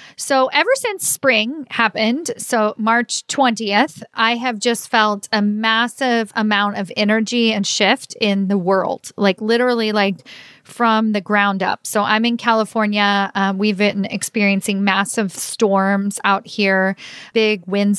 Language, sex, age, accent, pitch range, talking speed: English, female, 40-59, American, 200-230 Hz, 145 wpm